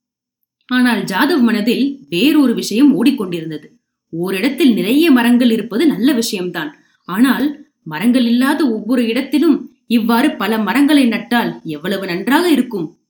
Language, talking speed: Tamil, 110 wpm